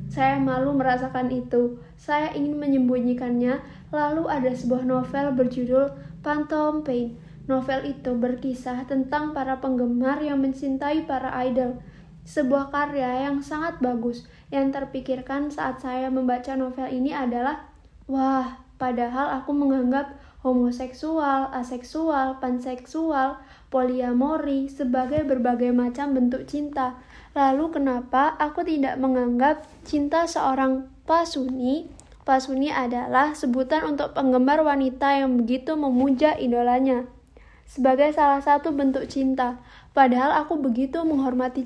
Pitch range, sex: 255-285 Hz, female